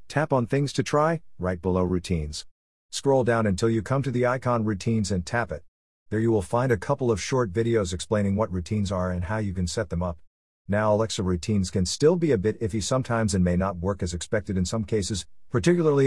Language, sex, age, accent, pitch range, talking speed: English, male, 50-69, American, 90-115 Hz, 225 wpm